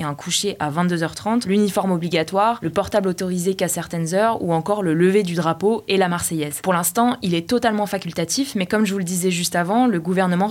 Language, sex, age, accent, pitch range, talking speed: French, female, 20-39, French, 175-220 Hz, 210 wpm